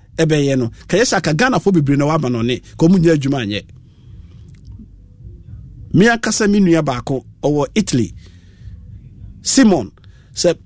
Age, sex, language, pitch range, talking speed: 50-69, male, English, 110-170 Hz, 115 wpm